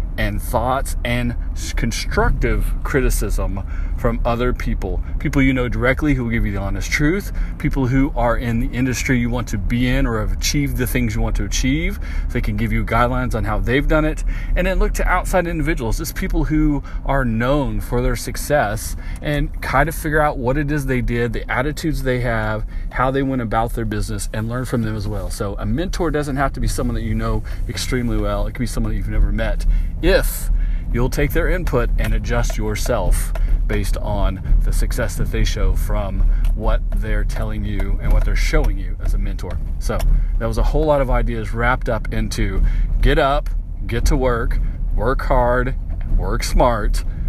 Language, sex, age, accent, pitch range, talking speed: English, male, 40-59, American, 95-125 Hz, 200 wpm